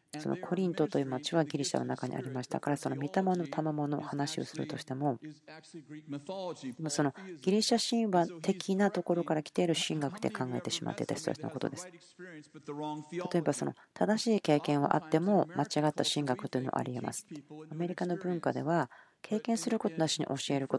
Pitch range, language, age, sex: 145-175 Hz, Japanese, 40-59, female